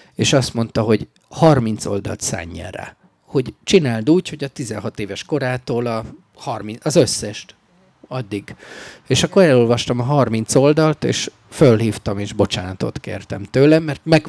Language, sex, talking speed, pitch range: Hungarian, male, 145 wpm, 105-145 Hz